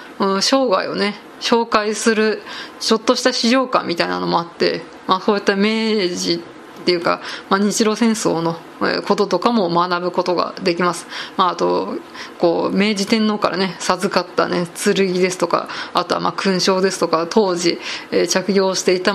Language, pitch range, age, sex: Japanese, 185-240 Hz, 20-39, female